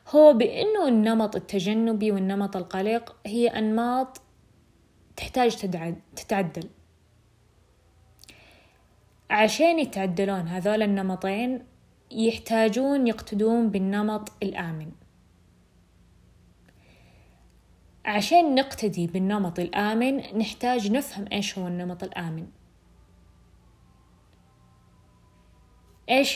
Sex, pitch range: female, 175-225 Hz